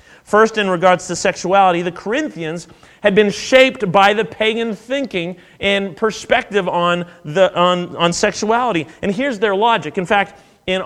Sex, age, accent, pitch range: male, 30-49, American, 180-225 Hz